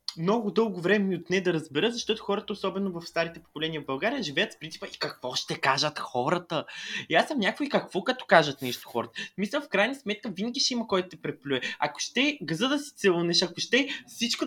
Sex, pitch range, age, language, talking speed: male, 135-195 Hz, 20-39, Bulgarian, 215 wpm